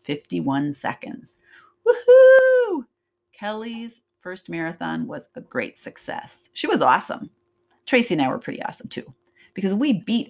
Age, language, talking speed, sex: 30-49, English, 135 wpm, female